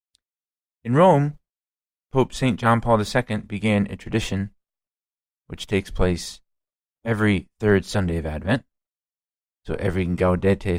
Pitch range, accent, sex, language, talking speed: 90-115 Hz, American, male, English, 115 wpm